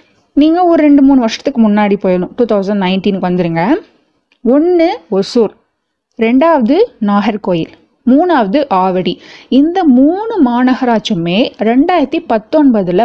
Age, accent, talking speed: 20-39, native, 100 wpm